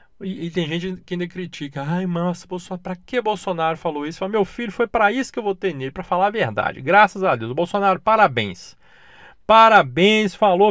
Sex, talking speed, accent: male, 205 wpm, Brazilian